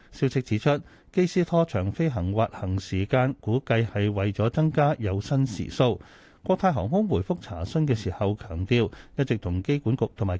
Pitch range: 100-145 Hz